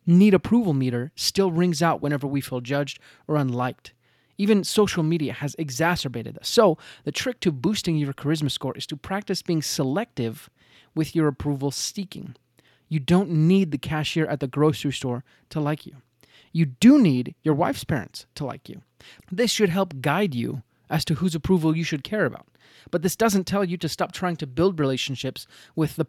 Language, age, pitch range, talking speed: English, 30-49, 135-175 Hz, 190 wpm